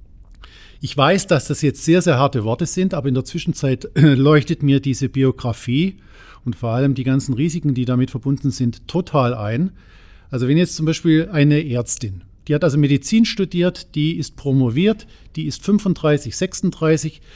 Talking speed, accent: 170 wpm, German